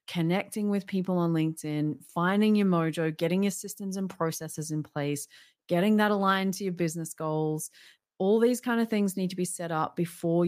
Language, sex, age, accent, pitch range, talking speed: English, female, 30-49, Australian, 155-195 Hz, 190 wpm